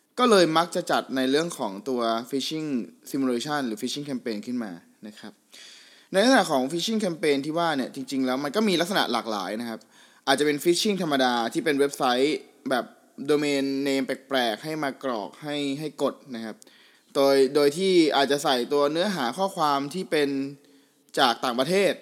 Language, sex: Thai, male